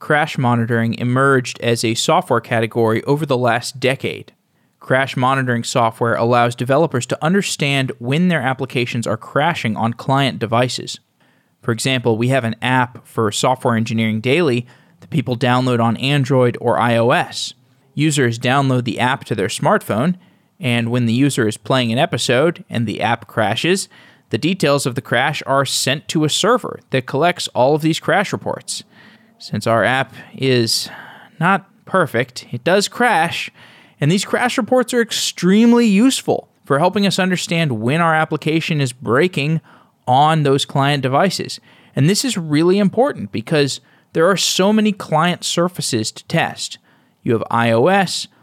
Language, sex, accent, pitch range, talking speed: English, male, American, 120-165 Hz, 155 wpm